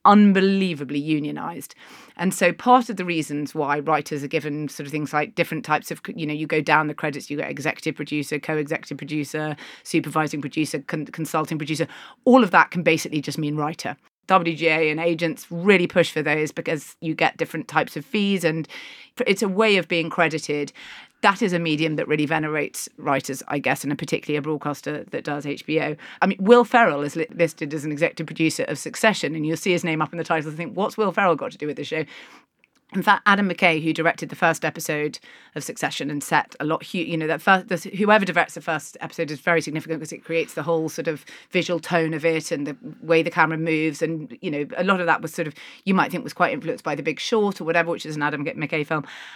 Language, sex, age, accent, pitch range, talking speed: English, female, 30-49, British, 155-175 Hz, 230 wpm